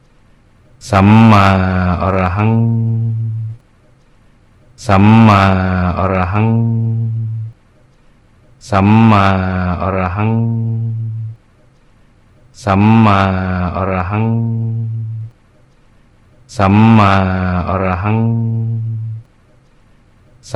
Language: Thai